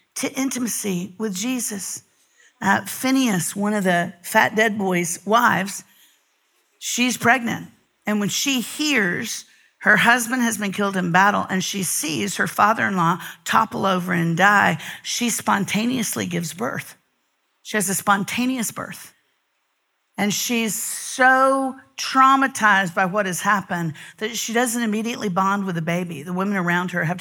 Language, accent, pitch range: English, American, 180-235 Hz